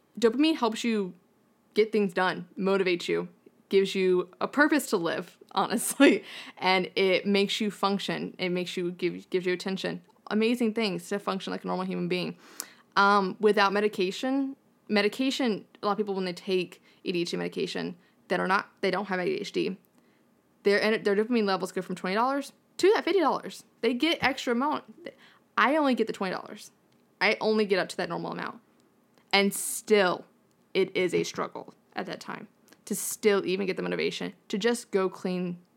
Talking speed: 170 wpm